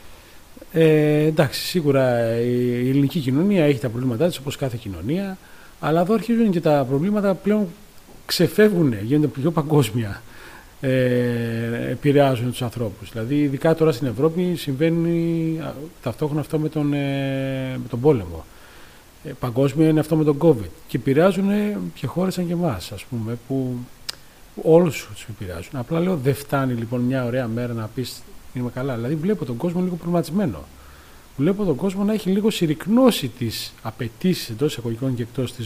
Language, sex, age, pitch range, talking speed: Greek, male, 40-59, 120-175 Hz, 155 wpm